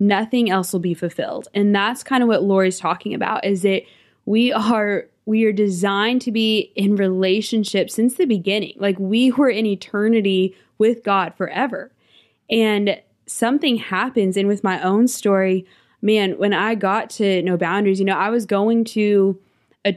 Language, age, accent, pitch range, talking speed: English, 20-39, American, 190-225 Hz, 170 wpm